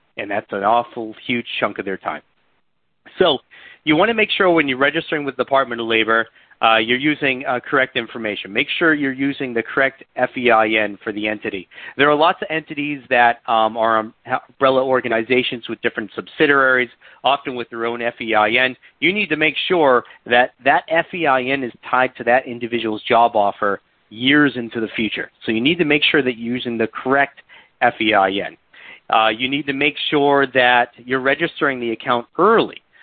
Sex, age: male, 40-59